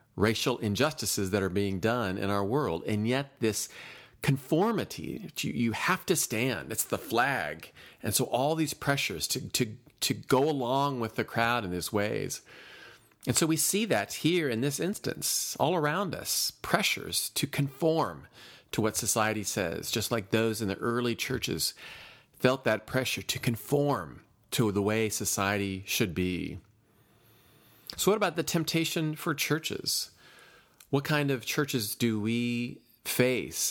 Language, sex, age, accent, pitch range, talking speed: English, male, 40-59, American, 100-130 Hz, 155 wpm